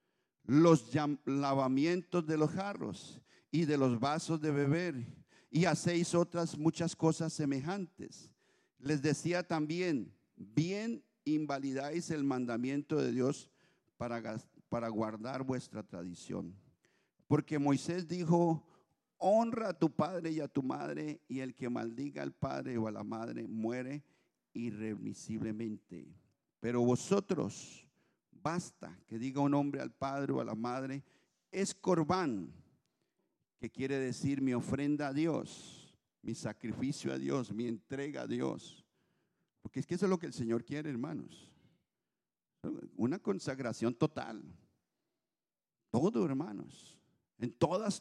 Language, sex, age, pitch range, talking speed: English, male, 50-69, 125-170 Hz, 125 wpm